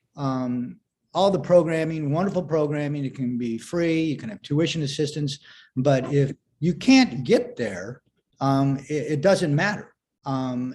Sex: male